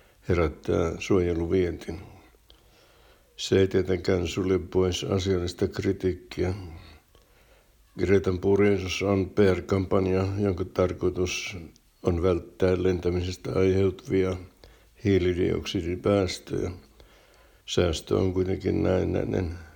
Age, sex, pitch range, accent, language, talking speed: 60-79, male, 90-95 Hz, native, Finnish, 75 wpm